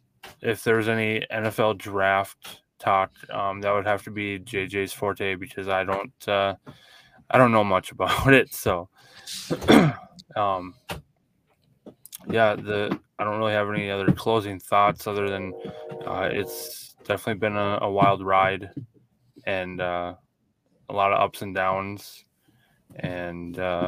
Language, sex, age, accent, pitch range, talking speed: English, male, 20-39, American, 95-110 Hz, 140 wpm